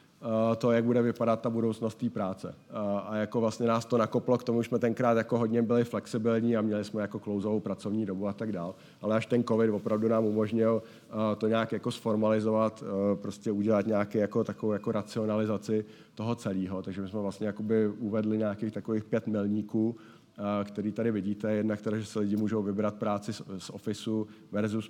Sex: male